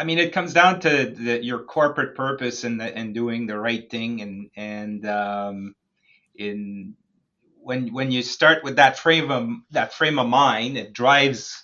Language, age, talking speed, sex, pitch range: English, 30-49, 175 wpm, male, 115-140 Hz